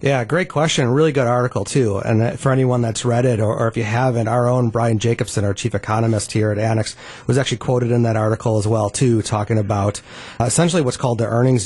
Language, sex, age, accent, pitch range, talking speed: English, male, 30-49, American, 110-130 Hz, 220 wpm